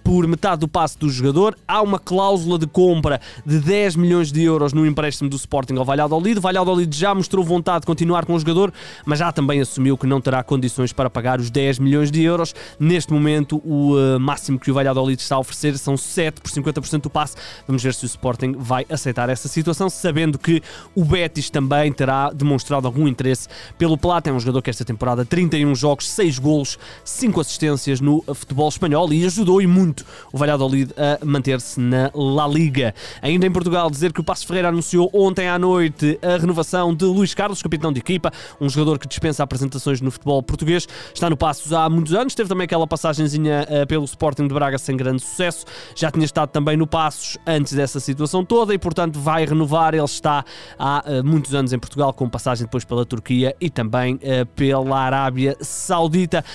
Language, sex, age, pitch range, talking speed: Portuguese, male, 20-39, 135-170 Hz, 195 wpm